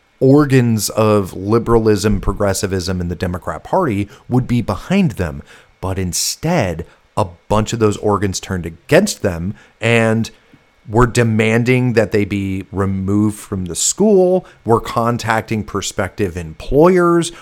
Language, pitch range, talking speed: English, 100-135 Hz, 125 wpm